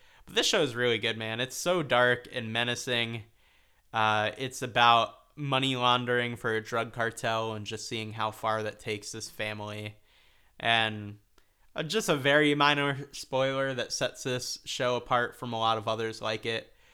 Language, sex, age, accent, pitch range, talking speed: English, male, 20-39, American, 110-135 Hz, 170 wpm